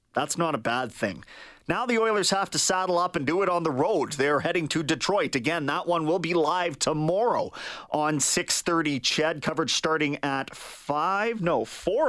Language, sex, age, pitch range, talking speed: English, male, 30-49, 130-170 Hz, 200 wpm